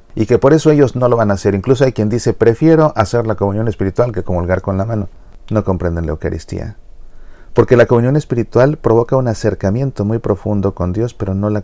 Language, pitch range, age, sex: Spanish, 90-115 Hz, 40-59, male